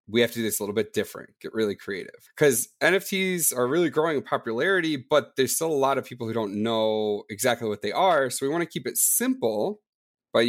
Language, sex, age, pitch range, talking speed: English, male, 30-49, 105-130 Hz, 235 wpm